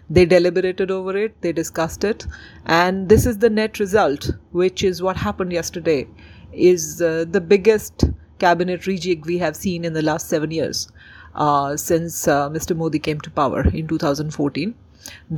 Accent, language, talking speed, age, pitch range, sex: Indian, English, 165 wpm, 40-59, 155-195 Hz, female